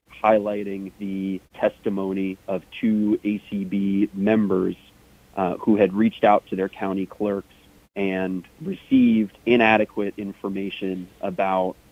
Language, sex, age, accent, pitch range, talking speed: English, male, 30-49, American, 95-110 Hz, 105 wpm